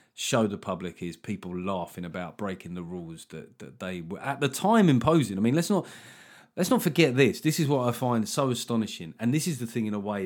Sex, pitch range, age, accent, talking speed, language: male, 105-140 Hz, 30-49, British, 240 wpm, English